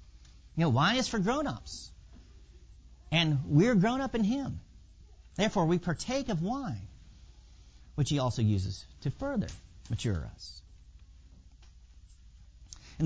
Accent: American